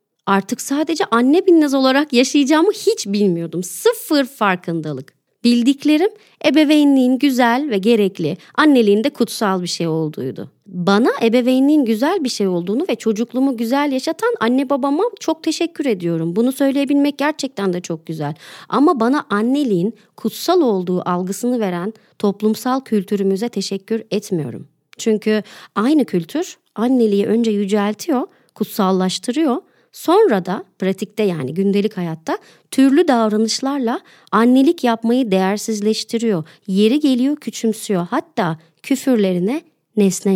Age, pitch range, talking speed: 40-59, 200-280 Hz, 115 wpm